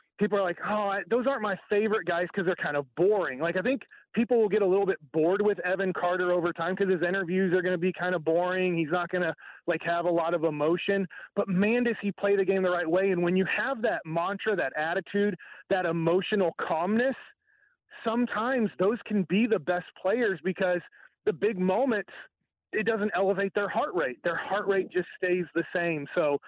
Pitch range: 175-215 Hz